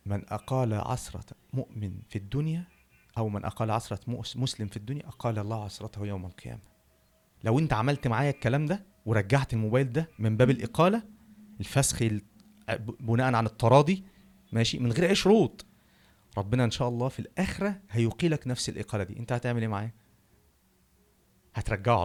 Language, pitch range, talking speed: Arabic, 105-145 Hz, 145 wpm